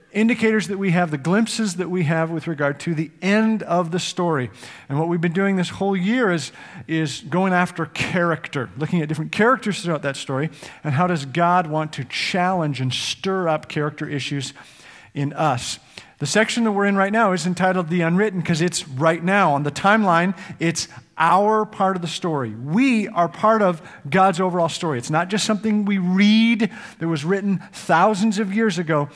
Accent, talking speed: American, 195 wpm